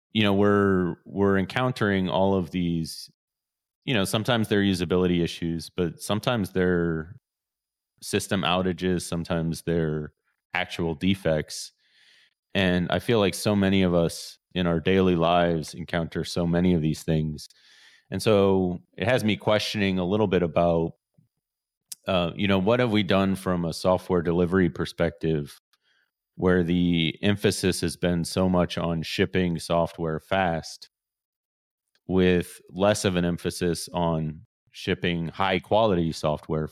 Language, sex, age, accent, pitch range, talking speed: English, male, 30-49, American, 80-95 Hz, 135 wpm